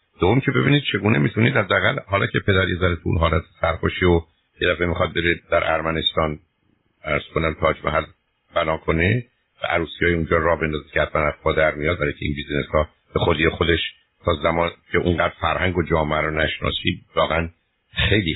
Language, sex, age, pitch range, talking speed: Persian, male, 50-69, 80-95 Hz, 175 wpm